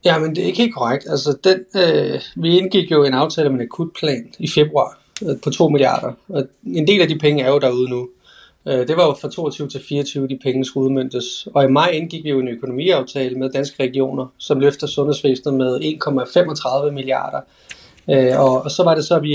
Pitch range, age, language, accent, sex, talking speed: 135-165 Hz, 30-49, Danish, native, male, 225 wpm